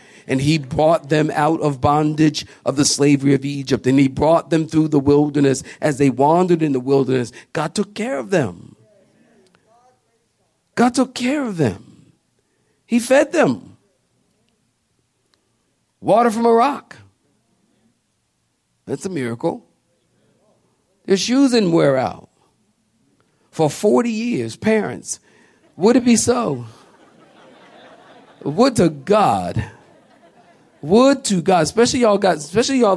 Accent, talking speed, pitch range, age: American, 125 wpm, 135-185 Hz, 50-69